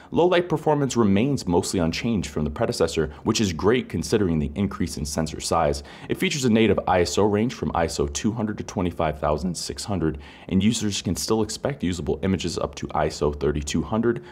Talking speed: 165 wpm